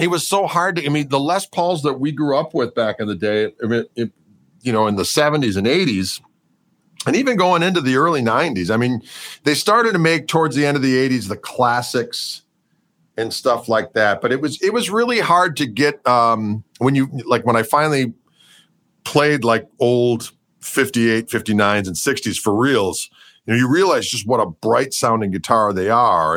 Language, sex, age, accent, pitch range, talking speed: English, male, 40-59, American, 105-160 Hz, 200 wpm